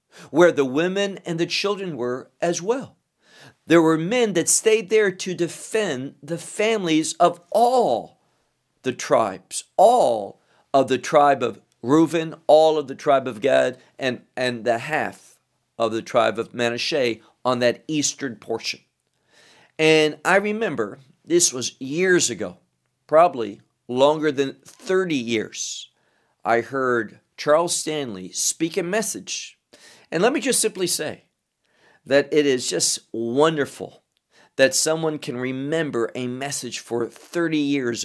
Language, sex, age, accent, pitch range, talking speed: English, male, 50-69, American, 130-175 Hz, 135 wpm